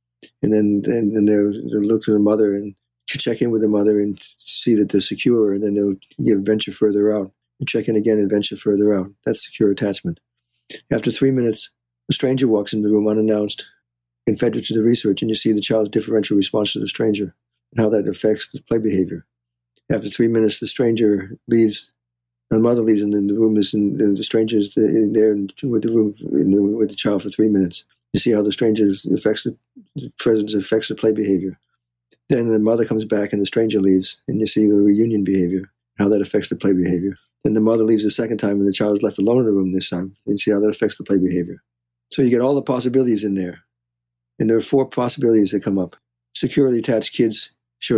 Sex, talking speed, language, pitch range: male, 225 wpm, English, 100-110 Hz